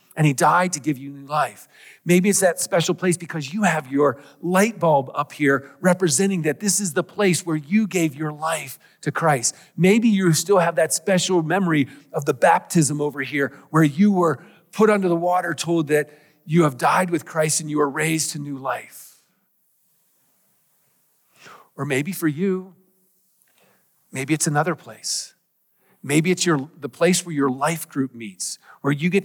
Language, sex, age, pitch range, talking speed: English, male, 40-59, 145-180 Hz, 180 wpm